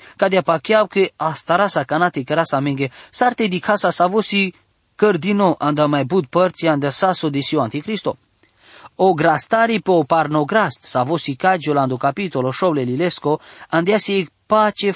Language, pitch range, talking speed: English, 150-195 Hz, 150 wpm